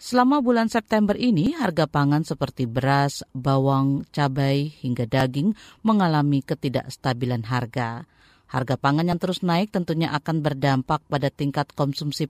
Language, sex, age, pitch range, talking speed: Indonesian, female, 40-59, 135-175 Hz, 125 wpm